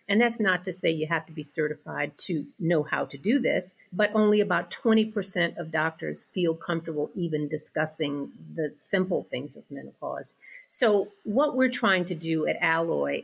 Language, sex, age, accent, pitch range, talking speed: English, female, 50-69, American, 170-220 Hz, 175 wpm